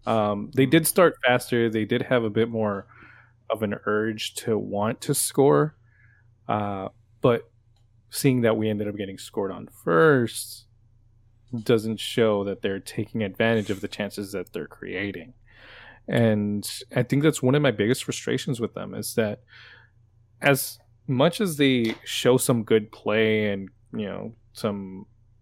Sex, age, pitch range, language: male, 20-39, 110-125 Hz, English